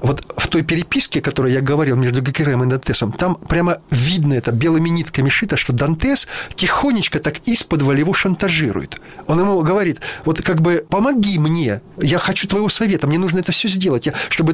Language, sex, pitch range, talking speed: Russian, male, 140-180 Hz, 185 wpm